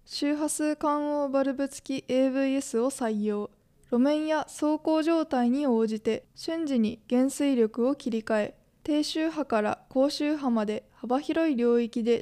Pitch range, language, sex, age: 235-290 Hz, Japanese, female, 20-39